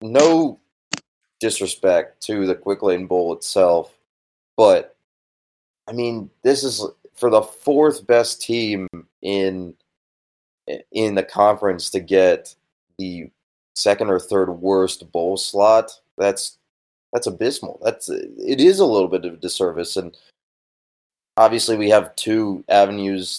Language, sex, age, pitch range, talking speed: English, male, 20-39, 90-110 Hz, 125 wpm